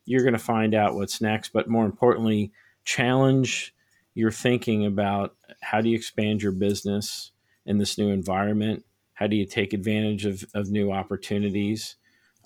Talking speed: 160 wpm